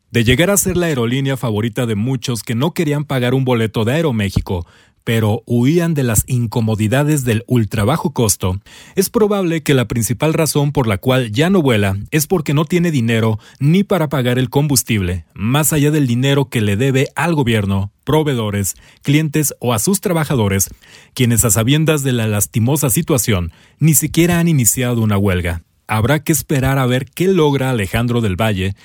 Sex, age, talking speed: male, 30-49, 175 wpm